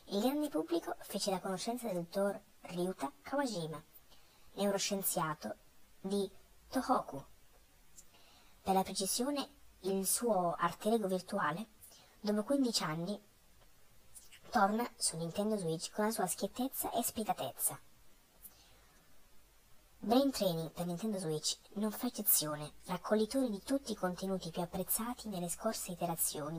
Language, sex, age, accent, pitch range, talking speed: Italian, male, 30-49, native, 165-210 Hz, 115 wpm